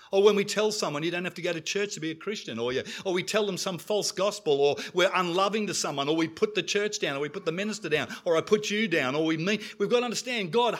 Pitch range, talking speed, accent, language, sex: 165-215 Hz, 300 wpm, Australian, English, male